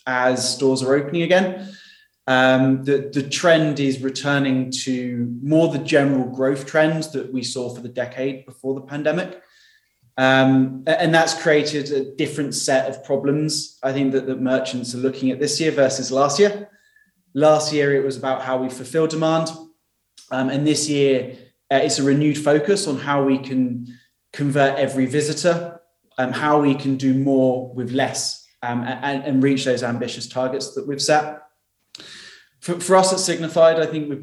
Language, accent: English, British